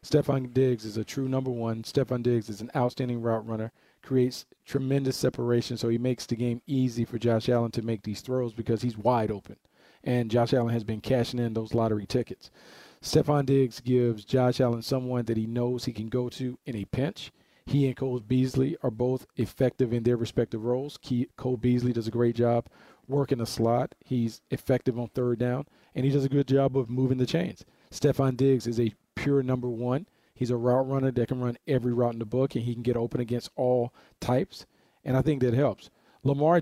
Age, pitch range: 40-59, 120-135 Hz